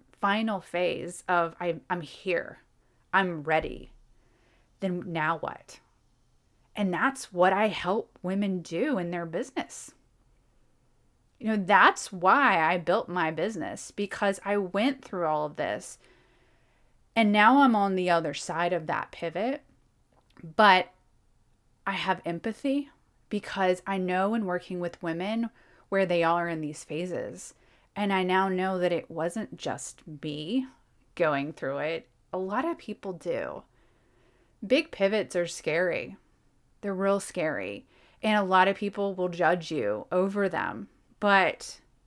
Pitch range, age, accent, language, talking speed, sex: 165-205 Hz, 30-49, American, English, 140 wpm, female